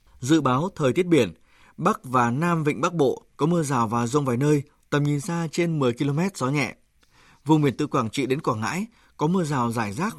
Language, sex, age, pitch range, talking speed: Vietnamese, male, 20-39, 130-160 Hz, 230 wpm